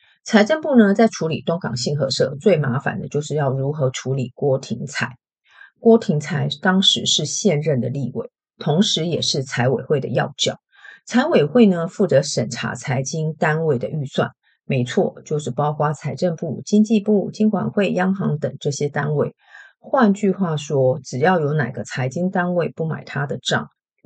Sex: female